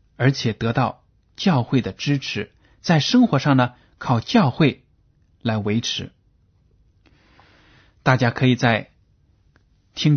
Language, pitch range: Chinese, 110-145 Hz